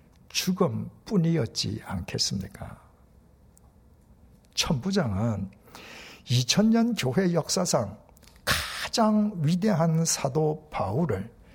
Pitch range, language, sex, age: 110-180 Hz, Korean, male, 60-79